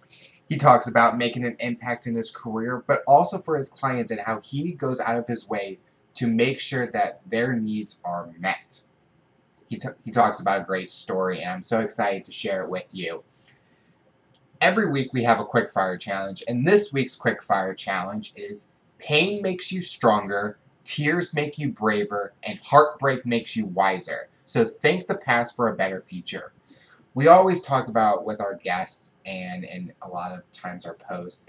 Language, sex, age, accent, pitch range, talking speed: English, male, 20-39, American, 115-165 Hz, 185 wpm